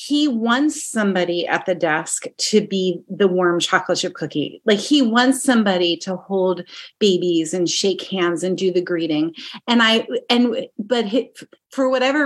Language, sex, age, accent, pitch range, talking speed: English, female, 30-49, American, 185-245 Hz, 160 wpm